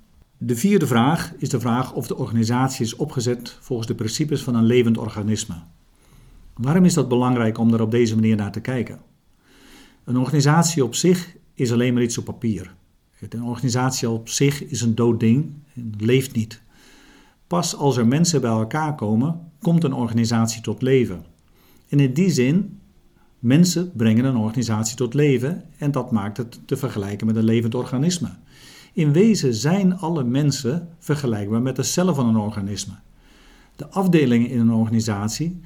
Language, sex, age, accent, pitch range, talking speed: Dutch, male, 50-69, Dutch, 115-145 Hz, 170 wpm